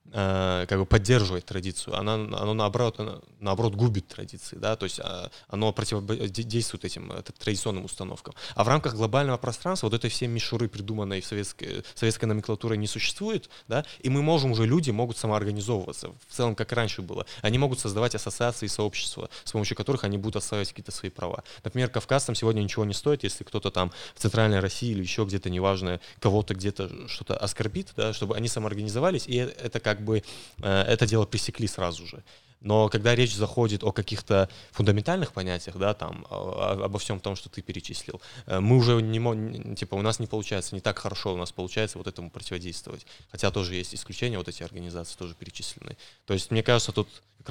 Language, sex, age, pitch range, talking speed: Russian, male, 20-39, 100-120 Hz, 185 wpm